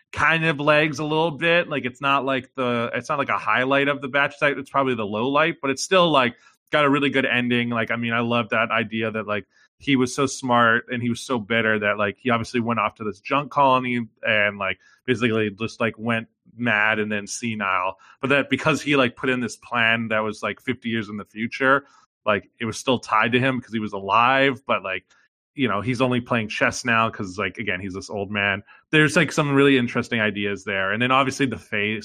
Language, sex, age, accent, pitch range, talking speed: English, male, 20-39, American, 110-140 Hz, 240 wpm